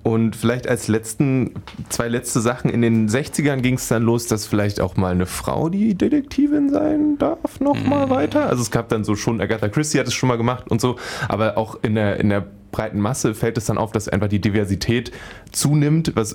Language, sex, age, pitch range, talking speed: German, male, 20-39, 105-125 Hz, 215 wpm